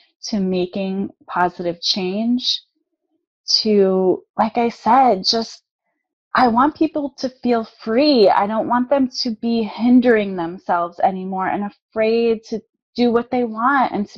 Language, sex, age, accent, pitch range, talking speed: English, female, 20-39, American, 210-275 Hz, 140 wpm